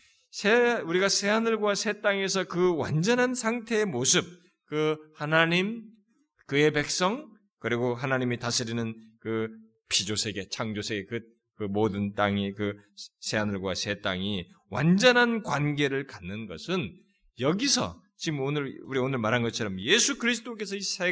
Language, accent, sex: Korean, native, male